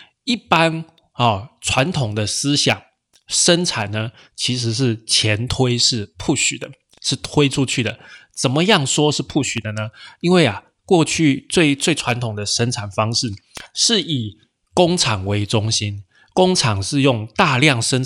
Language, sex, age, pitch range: Chinese, male, 20-39, 115-150 Hz